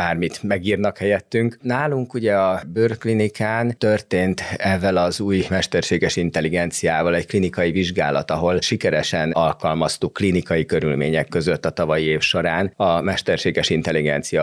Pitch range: 85-100 Hz